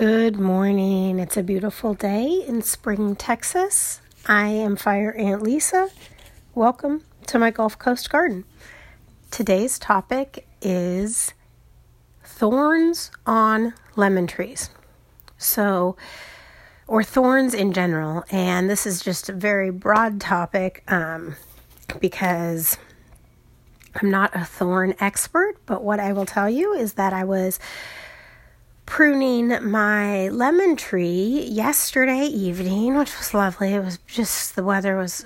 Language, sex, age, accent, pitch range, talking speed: English, female, 30-49, American, 185-240 Hz, 125 wpm